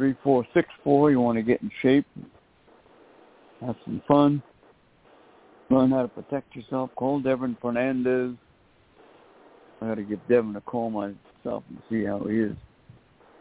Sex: male